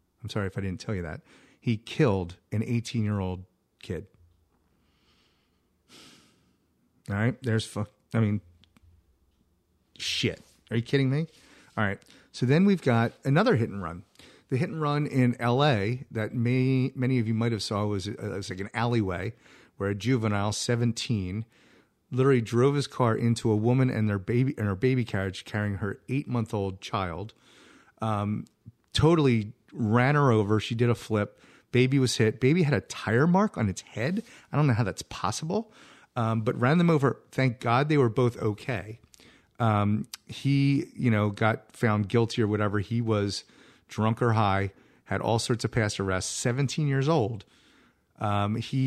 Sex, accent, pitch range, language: male, American, 100-125 Hz, English